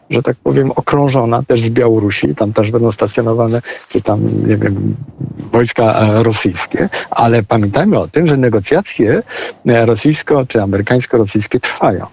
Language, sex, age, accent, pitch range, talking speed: Polish, male, 50-69, native, 115-145 Hz, 135 wpm